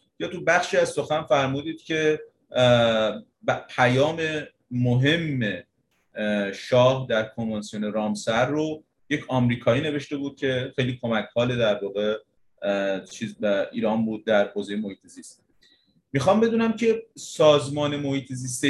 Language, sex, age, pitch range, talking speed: Persian, male, 30-49, 115-150 Hz, 115 wpm